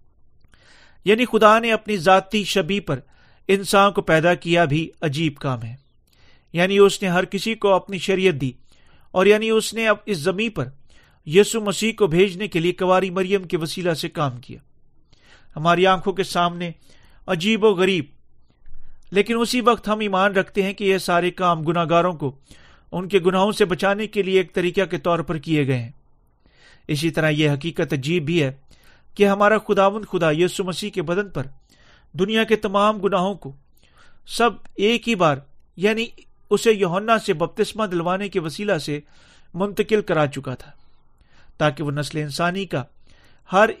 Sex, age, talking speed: male, 40-59, 170 wpm